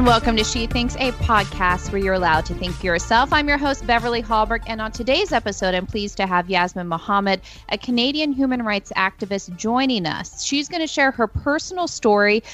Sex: female